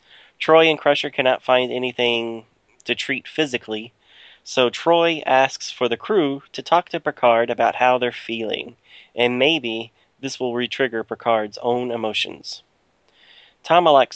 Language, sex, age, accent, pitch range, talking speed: English, male, 30-49, American, 115-135 Hz, 135 wpm